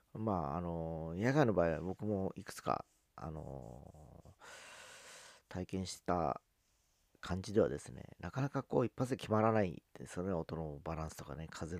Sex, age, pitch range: male, 40-59, 80-105 Hz